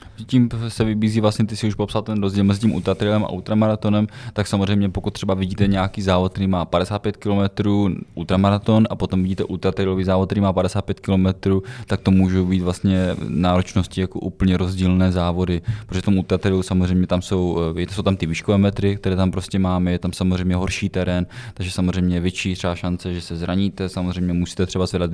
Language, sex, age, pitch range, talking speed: Czech, male, 20-39, 90-100 Hz, 185 wpm